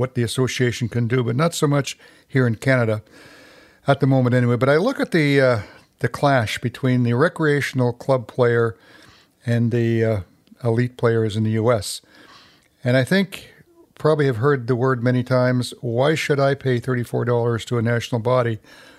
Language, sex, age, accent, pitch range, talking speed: English, male, 60-79, American, 120-140 Hz, 175 wpm